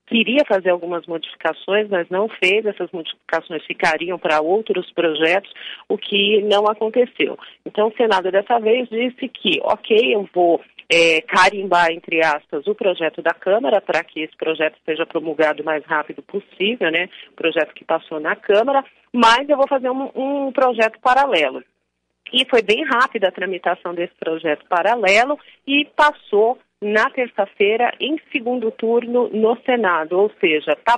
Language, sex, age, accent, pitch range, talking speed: Portuguese, female, 40-59, Brazilian, 175-240 Hz, 155 wpm